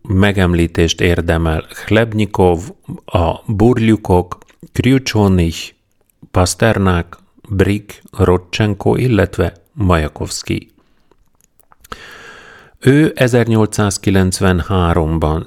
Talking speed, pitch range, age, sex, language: 50 wpm, 85-105 Hz, 40-59, male, Hungarian